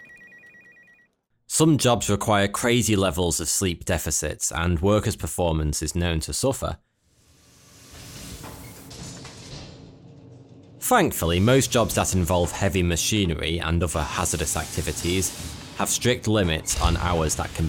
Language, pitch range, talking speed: English, 85-140 Hz, 110 wpm